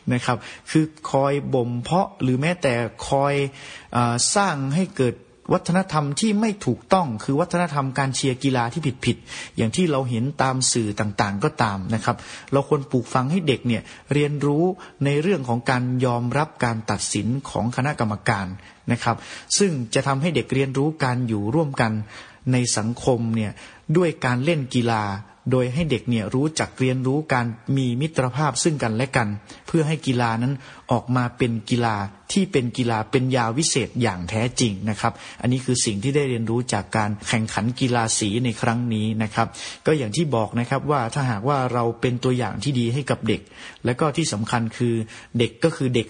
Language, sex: Thai, male